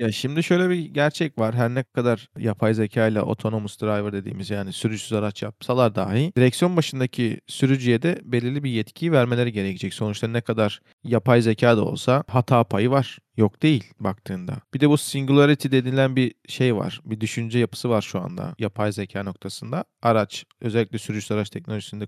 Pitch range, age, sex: 110-145 Hz, 40-59, male